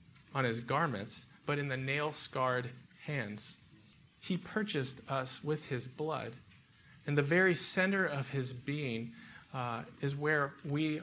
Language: English